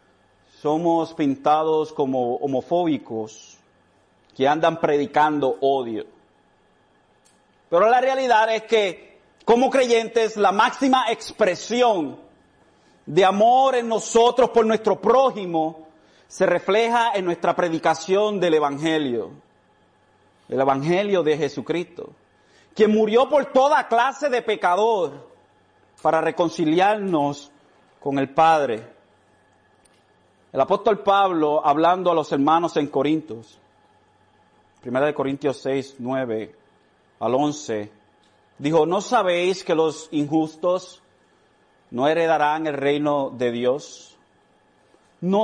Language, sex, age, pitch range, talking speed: Spanish, male, 40-59, 140-220 Hz, 100 wpm